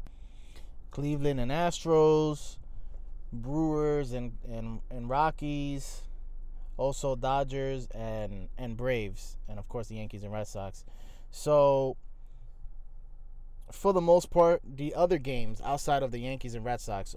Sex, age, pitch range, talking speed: male, 20-39, 110-135 Hz, 125 wpm